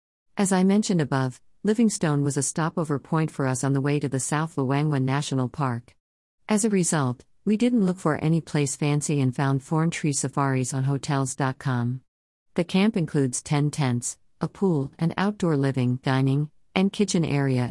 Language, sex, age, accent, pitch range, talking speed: English, female, 50-69, American, 130-170 Hz, 175 wpm